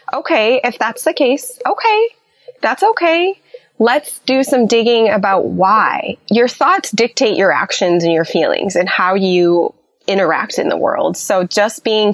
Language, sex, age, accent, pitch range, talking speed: English, female, 20-39, American, 185-245 Hz, 160 wpm